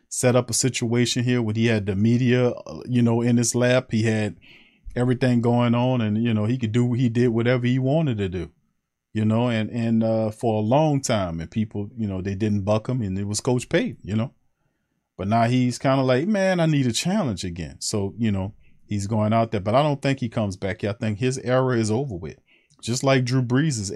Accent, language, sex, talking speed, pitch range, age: American, English, male, 240 wpm, 105-130 Hz, 40-59